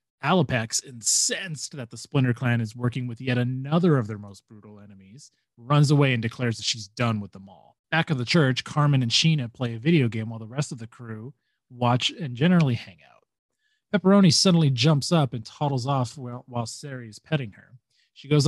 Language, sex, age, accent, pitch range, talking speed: English, male, 30-49, American, 120-150 Hz, 205 wpm